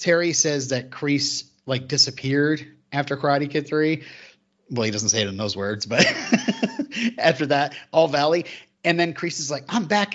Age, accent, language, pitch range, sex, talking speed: 30-49, American, English, 115-155 Hz, male, 175 wpm